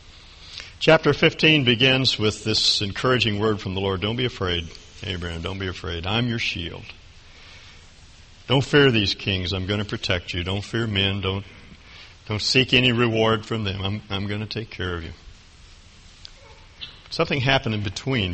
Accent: American